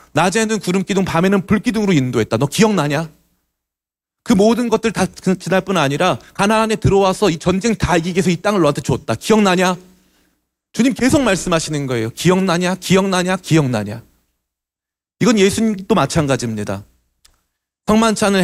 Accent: native